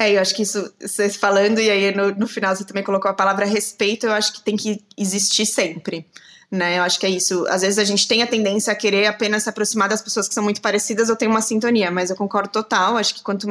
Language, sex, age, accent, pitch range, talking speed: Portuguese, female, 20-39, Brazilian, 200-245 Hz, 265 wpm